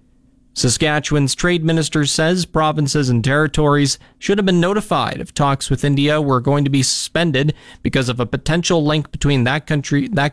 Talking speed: 170 wpm